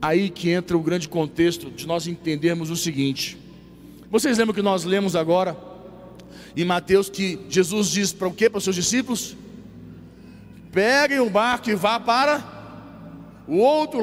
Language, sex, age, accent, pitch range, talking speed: Portuguese, male, 40-59, Brazilian, 175-215 Hz, 160 wpm